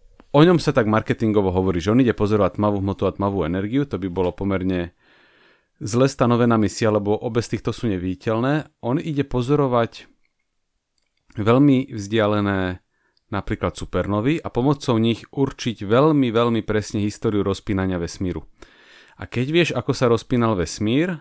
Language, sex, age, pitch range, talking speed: English, male, 30-49, 100-130 Hz, 145 wpm